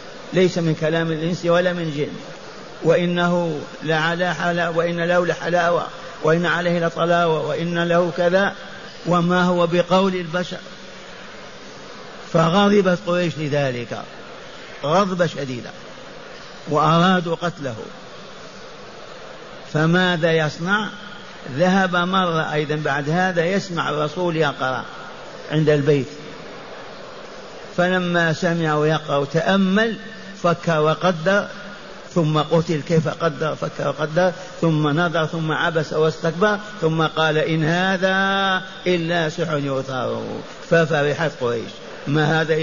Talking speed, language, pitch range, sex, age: 95 wpm, Arabic, 150-180 Hz, male, 50-69